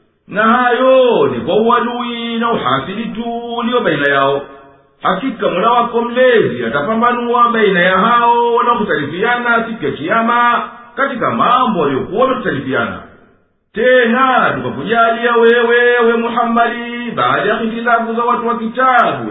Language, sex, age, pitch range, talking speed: Swahili, male, 50-69, 225-240 Hz, 120 wpm